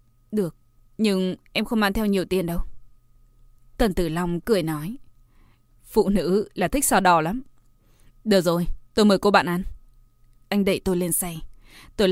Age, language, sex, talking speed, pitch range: 20-39, Vietnamese, female, 170 wpm, 125-210 Hz